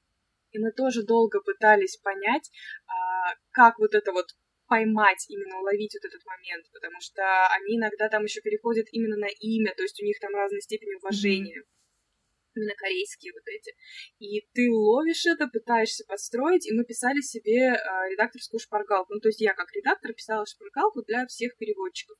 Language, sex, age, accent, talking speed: Russian, female, 20-39, native, 170 wpm